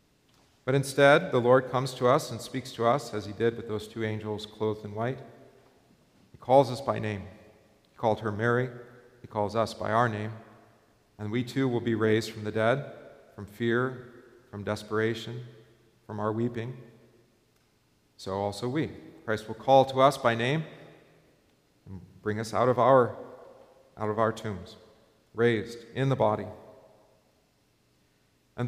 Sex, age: male, 40-59